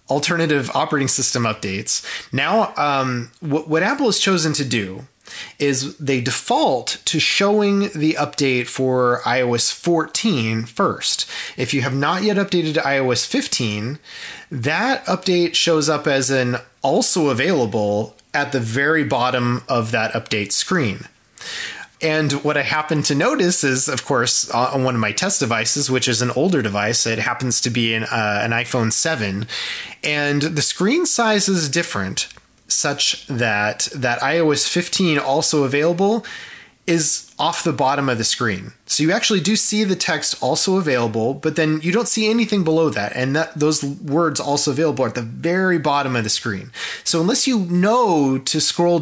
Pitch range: 125-170 Hz